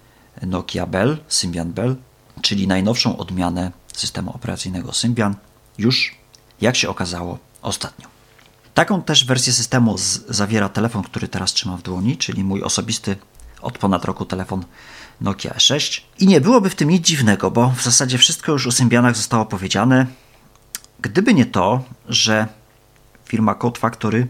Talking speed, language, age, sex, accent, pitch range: 145 wpm, Polish, 40-59, male, native, 95-120 Hz